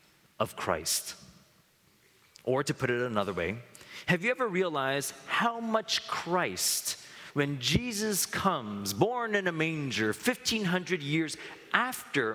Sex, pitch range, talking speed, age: male, 115-180 Hz, 120 wpm, 40-59